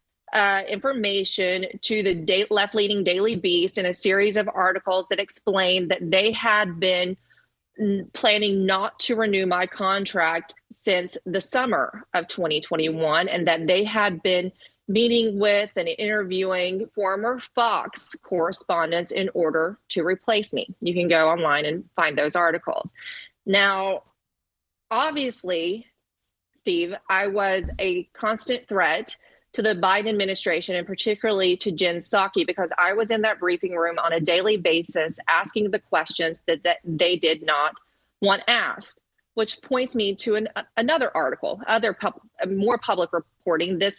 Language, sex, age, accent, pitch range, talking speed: English, female, 30-49, American, 180-215 Hz, 145 wpm